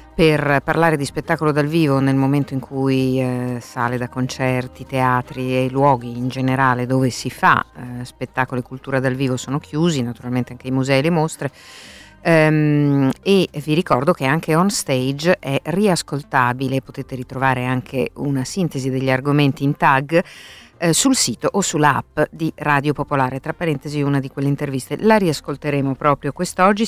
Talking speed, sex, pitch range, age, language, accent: 165 wpm, female, 130-150 Hz, 50-69, Italian, native